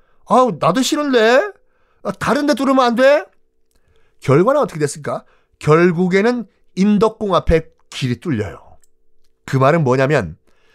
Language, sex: Korean, male